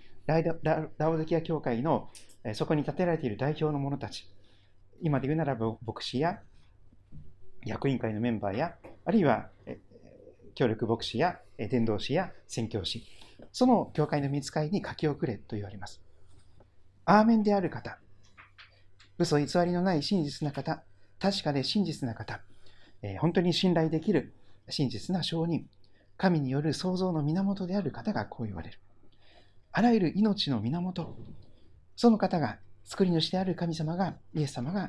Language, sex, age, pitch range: Japanese, male, 40-59, 100-160 Hz